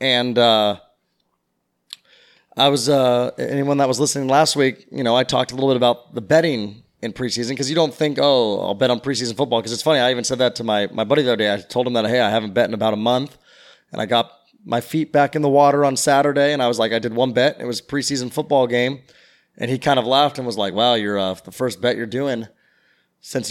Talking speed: 260 wpm